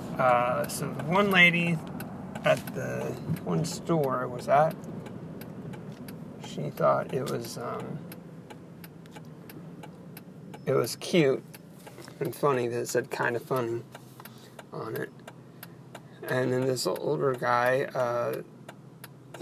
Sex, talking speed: male, 110 wpm